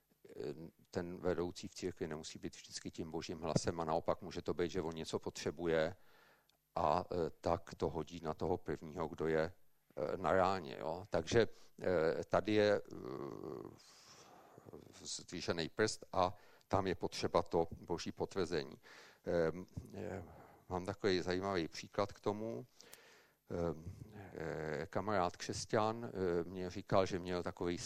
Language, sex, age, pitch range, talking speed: Czech, male, 50-69, 90-110 Hz, 120 wpm